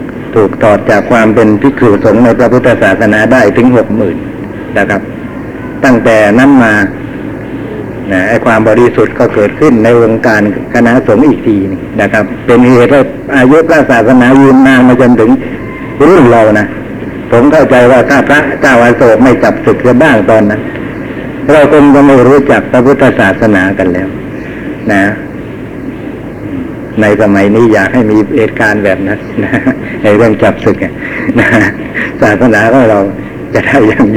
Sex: male